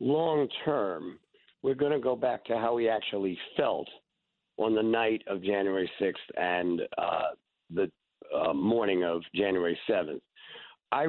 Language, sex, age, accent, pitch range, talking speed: English, male, 50-69, American, 100-160 Hz, 145 wpm